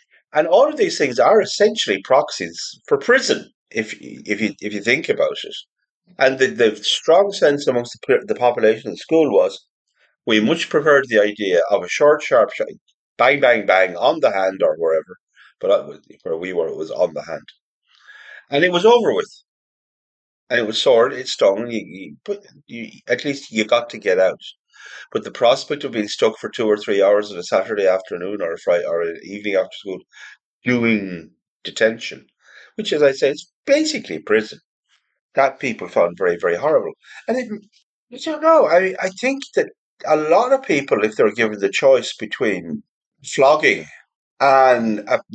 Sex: male